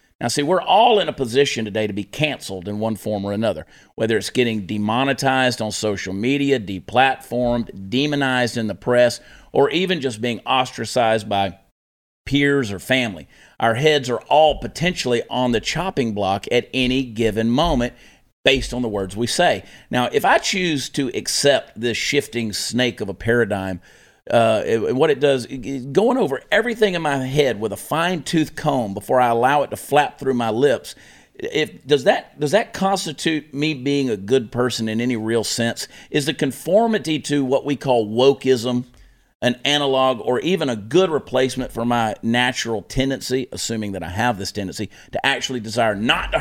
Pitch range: 110-145 Hz